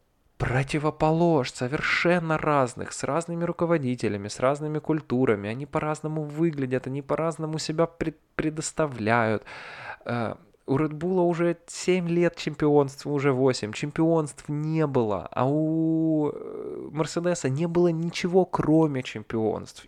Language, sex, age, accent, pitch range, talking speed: Russian, male, 20-39, native, 110-155 Hz, 110 wpm